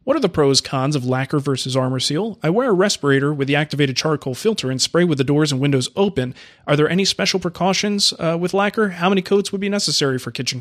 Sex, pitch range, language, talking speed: male, 135-180 Hz, English, 245 wpm